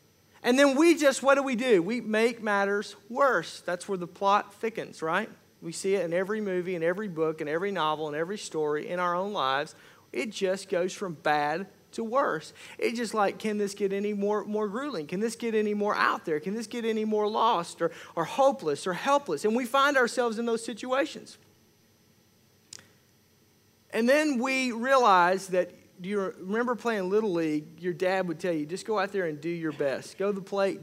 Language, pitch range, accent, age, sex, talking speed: English, 180-245 Hz, American, 40-59, male, 210 wpm